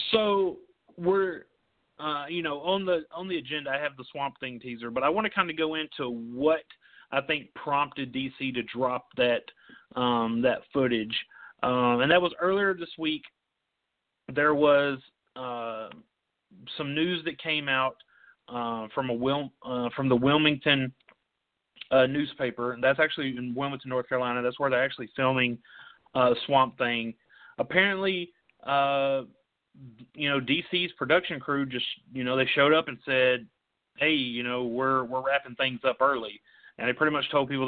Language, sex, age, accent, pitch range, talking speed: English, male, 30-49, American, 125-150 Hz, 165 wpm